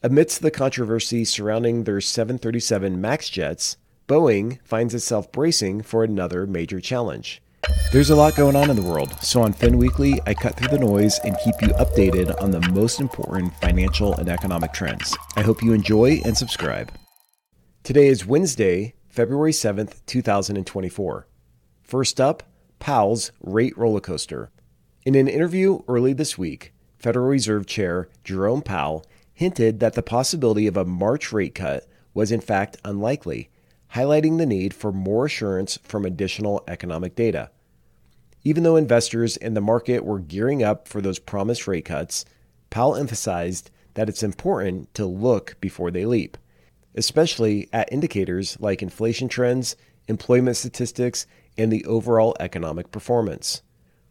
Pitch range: 95-125 Hz